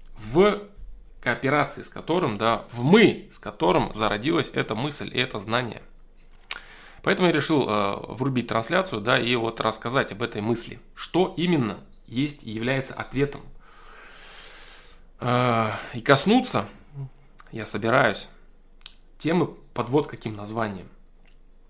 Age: 20-39